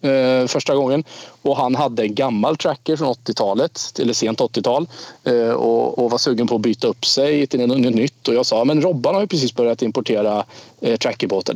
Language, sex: Swedish, male